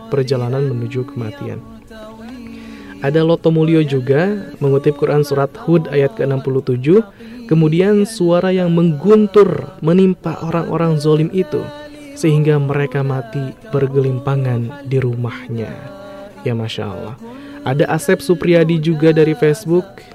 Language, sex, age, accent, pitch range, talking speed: Indonesian, male, 20-39, native, 135-170 Hz, 105 wpm